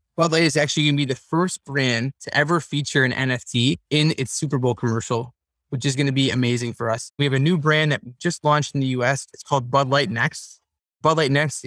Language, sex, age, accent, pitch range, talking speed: English, male, 20-39, American, 125-150 Hz, 240 wpm